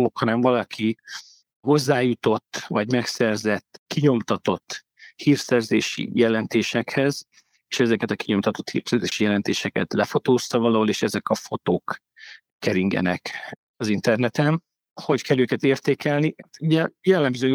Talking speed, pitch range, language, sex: 100 wpm, 105-135 Hz, Hungarian, male